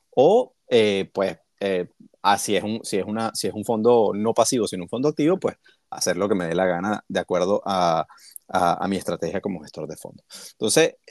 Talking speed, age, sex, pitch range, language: 190 wpm, 30-49, male, 105-155 Hz, Spanish